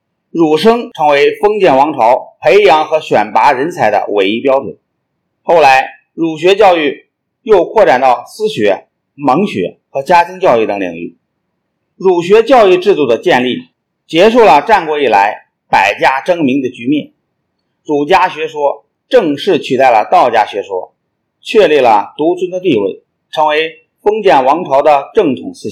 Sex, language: male, Chinese